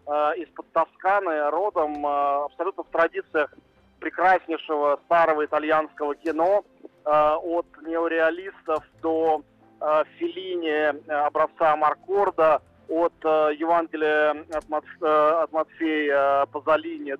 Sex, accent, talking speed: male, native, 80 wpm